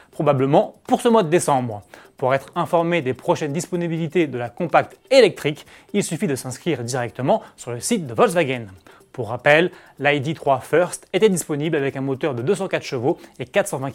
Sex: male